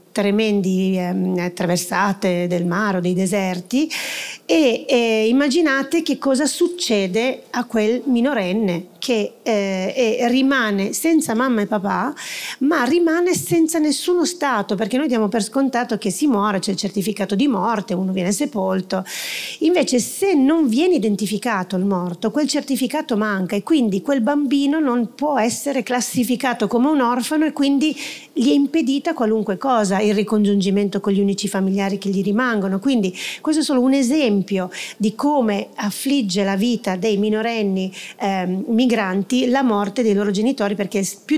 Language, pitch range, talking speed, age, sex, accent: Italian, 200-260 Hz, 150 wpm, 40-59, female, native